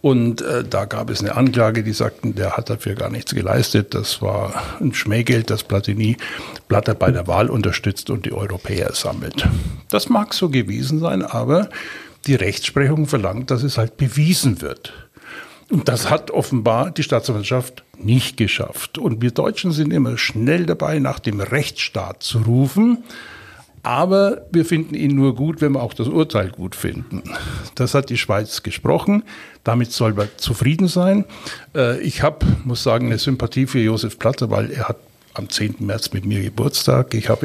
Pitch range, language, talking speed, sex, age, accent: 110-135 Hz, German, 175 wpm, male, 60-79, German